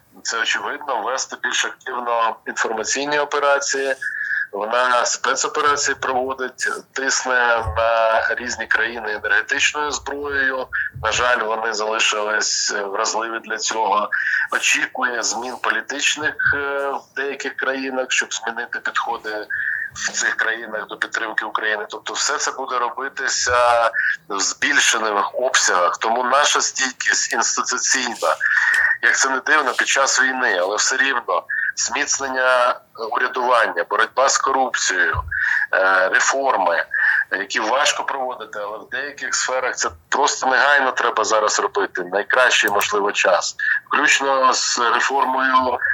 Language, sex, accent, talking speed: Ukrainian, male, native, 110 wpm